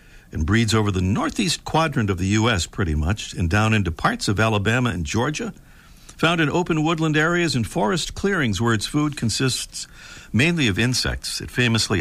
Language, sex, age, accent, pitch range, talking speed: English, male, 60-79, American, 95-155 Hz, 180 wpm